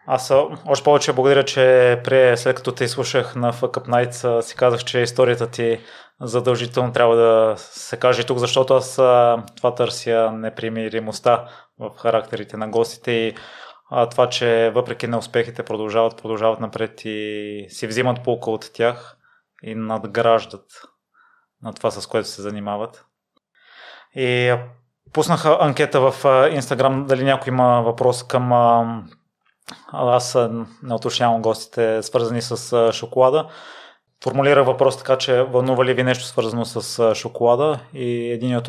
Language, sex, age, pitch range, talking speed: Bulgarian, male, 20-39, 115-130 Hz, 135 wpm